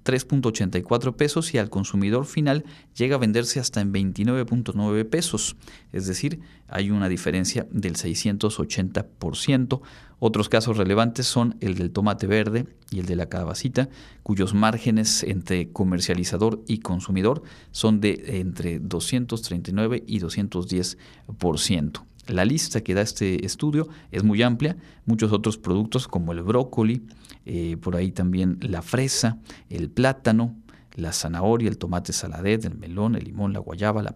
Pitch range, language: 95-120 Hz, Spanish